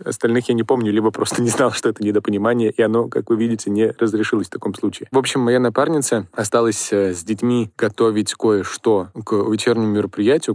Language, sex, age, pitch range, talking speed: Russian, male, 20-39, 105-120 Hz, 190 wpm